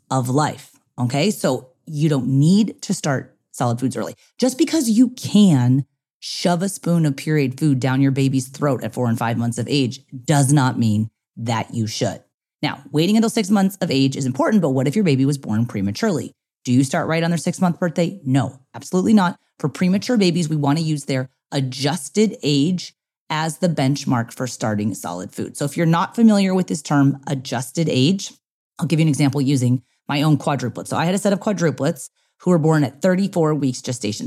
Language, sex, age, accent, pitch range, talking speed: English, female, 30-49, American, 135-195 Hz, 205 wpm